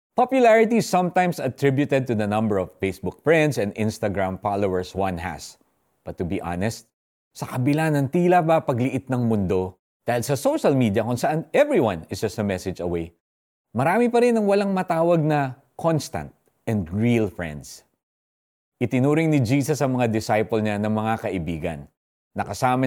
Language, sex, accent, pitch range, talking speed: Filipino, male, native, 95-150 Hz, 155 wpm